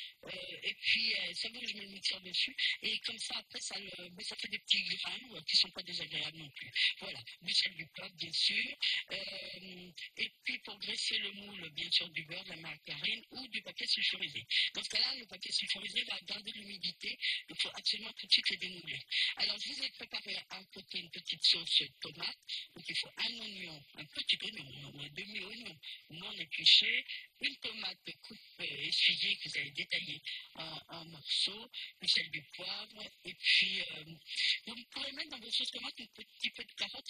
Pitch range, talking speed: 170-225 Hz, 205 wpm